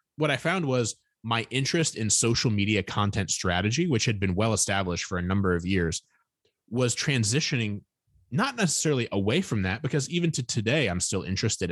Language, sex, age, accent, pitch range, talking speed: English, male, 20-39, American, 95-135 Hz, 175 wpm